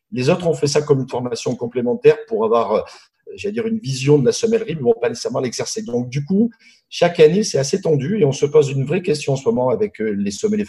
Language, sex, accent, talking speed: French, male, French, 260 wpm